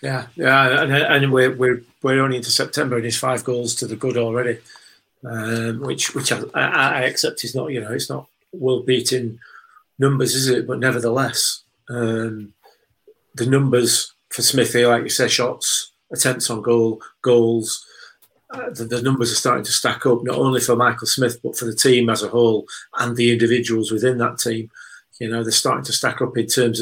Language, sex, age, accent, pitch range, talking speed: English, male, 40-59, British, 115-130 Hz, 190 wpm